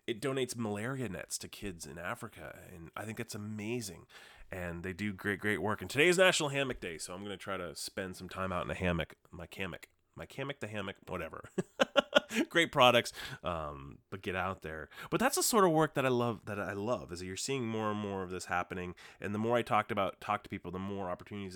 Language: English